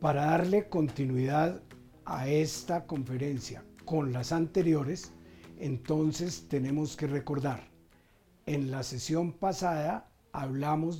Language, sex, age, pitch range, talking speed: Spanish, male, 50-69, 135-170 Hz, 100 wpm